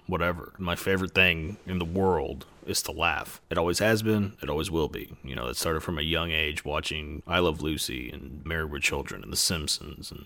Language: English